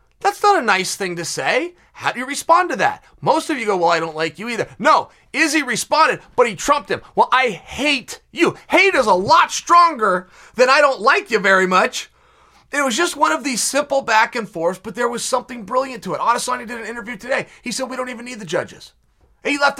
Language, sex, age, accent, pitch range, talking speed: English, male, 30-49, American, 195-280 Hz, 235 wpm